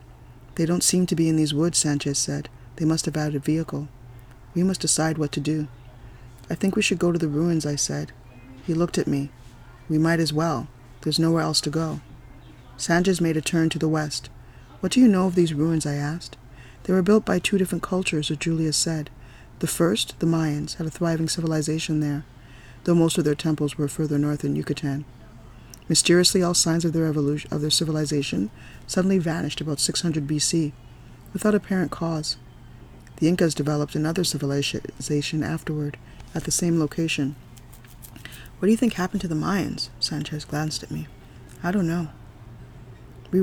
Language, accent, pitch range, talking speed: English, American, 140-170 Hz, 180 wpm